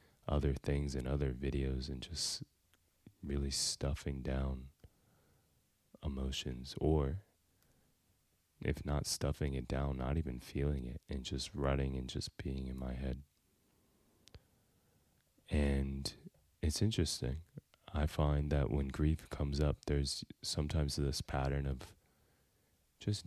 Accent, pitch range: American, 70-90 Hz